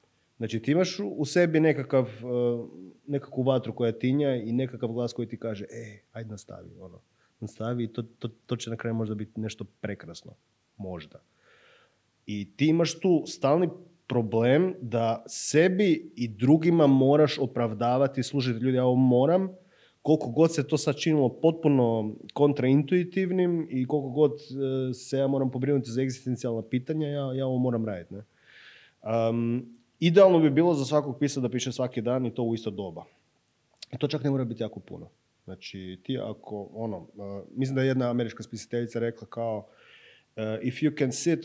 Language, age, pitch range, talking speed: English, 30-49, 115-150 Hz, 165 wpm